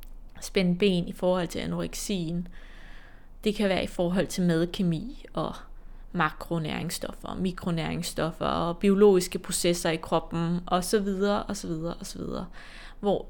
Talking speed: 105 wpm